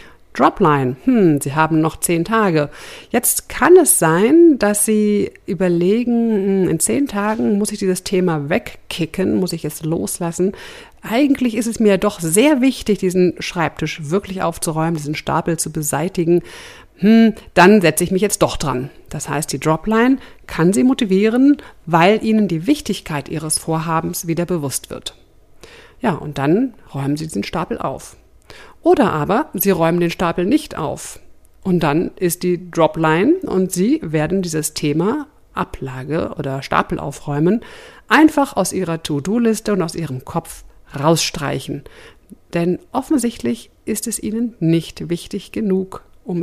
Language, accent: German, German